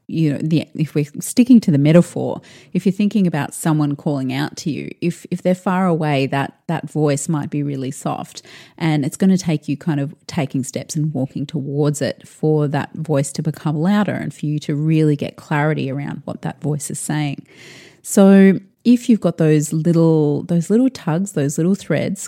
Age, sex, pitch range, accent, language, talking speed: 30-49, female, 145-170 Hz, Australian, English, 200 wpm